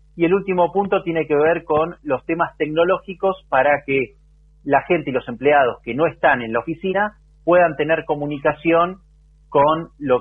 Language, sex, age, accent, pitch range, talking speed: Spanish, male, 30-49, Argentinian, 130-160 Hz, 170 wpm